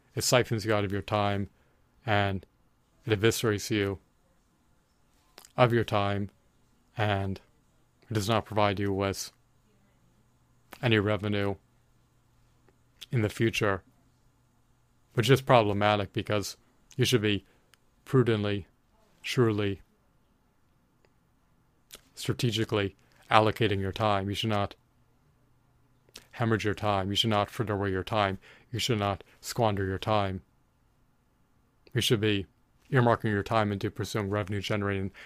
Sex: male